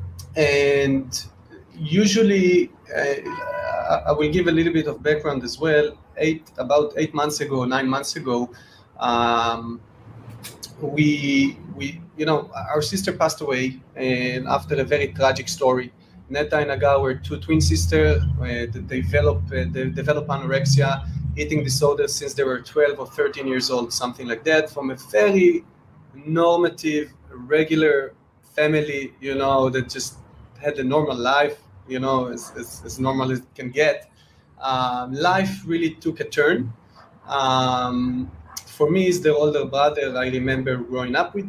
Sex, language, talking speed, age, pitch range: male, English, 150 wpm, 30-49, 125-155 Hz